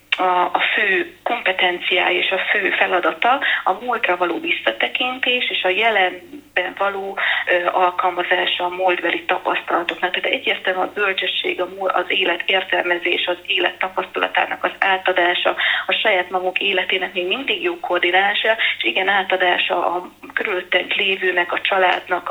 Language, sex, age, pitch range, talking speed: Hungarian, female, 30-49, 180-200 Hz, 135 wpm